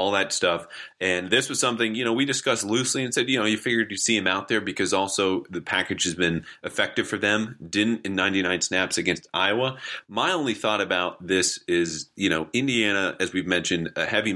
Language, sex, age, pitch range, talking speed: English, male, 30-49, 90-110 Hz, 215 wpm